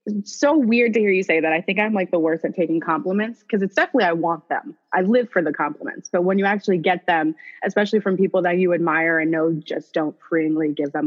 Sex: female